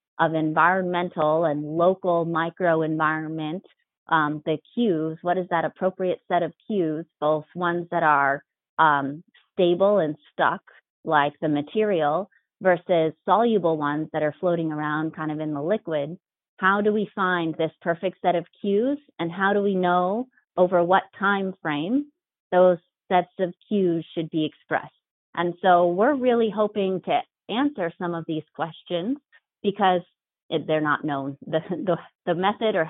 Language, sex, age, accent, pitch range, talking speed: English, female, 30-49, American, 160-190 Hz, 150 wpm